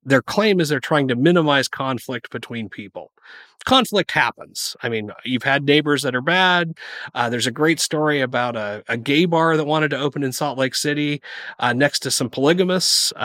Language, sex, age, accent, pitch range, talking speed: English, male, 30-49, American, 125-165 Hz, 195 wpm